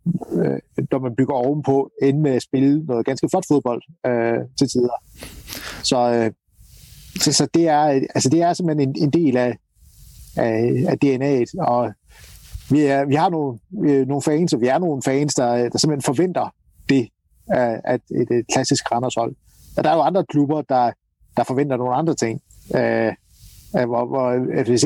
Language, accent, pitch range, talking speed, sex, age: Danish, native, 125-155 Hz, 170 wpm, male, 60-79